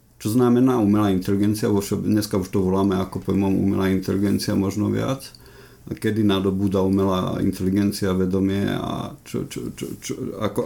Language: Slovak